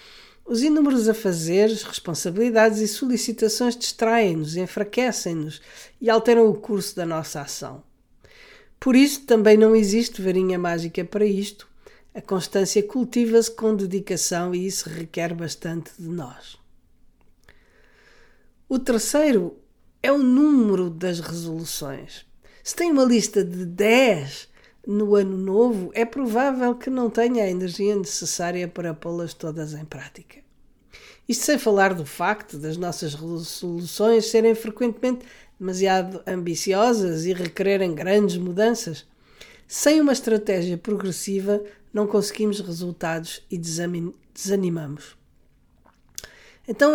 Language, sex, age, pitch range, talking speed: Portuguese, female, 50-69, 175-225 Hz, 115 wpm